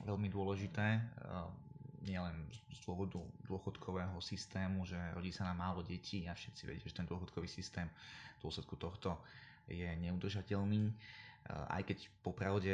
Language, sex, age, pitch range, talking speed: Slovak, male, 20-39, 85-100 Hz, 130 wpm